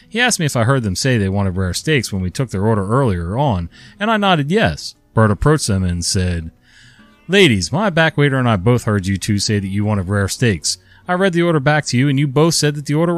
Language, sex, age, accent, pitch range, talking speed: English, male, 30-49, American, 100-145 Hz, 265 wpm